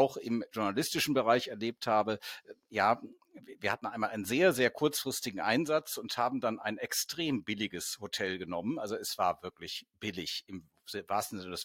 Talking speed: 170 wpm